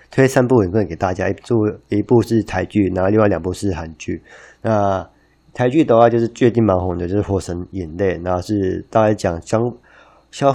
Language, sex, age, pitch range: Chinese, male, 20-39, 90-115 Hz